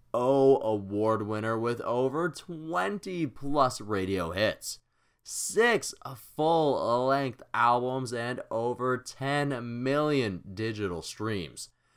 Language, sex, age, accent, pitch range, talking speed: English, male, 20-39, American, 115-140 Hz, 85 wpm